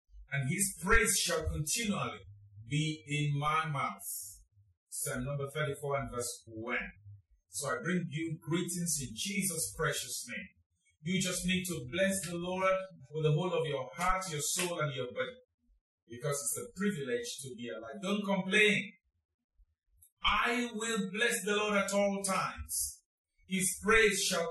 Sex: male